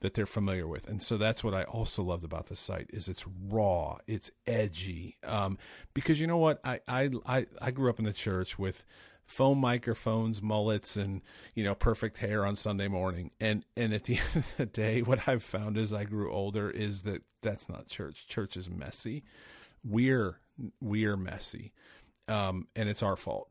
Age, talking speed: 40-59, 195 wpm